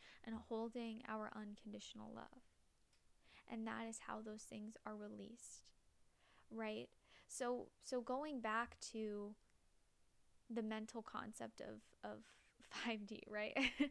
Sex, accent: female, American